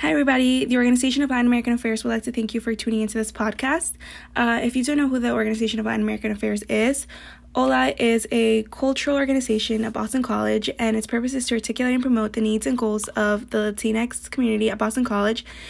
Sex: female